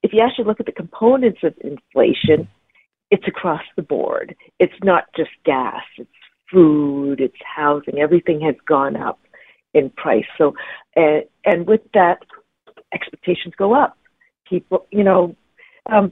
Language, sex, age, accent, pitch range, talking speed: English, female, 50-69, American, 160-205 Hz, 145 wpm